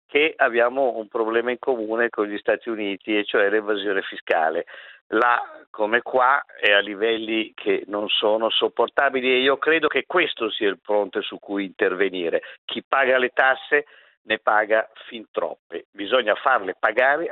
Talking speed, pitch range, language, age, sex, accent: 160 wpm, 110-145 Hz, Italian, 50-69, male, native